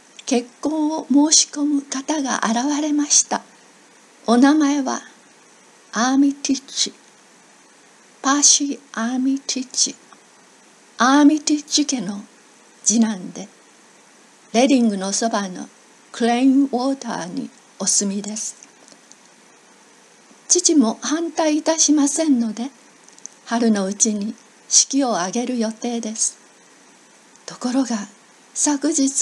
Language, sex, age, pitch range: Japanese, female, 60-79, 225-285 Hz